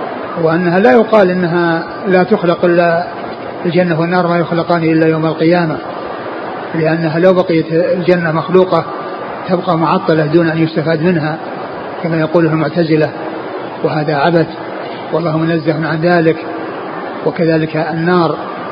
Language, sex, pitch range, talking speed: Arabic, male, 170-215 Hz, 115 wpm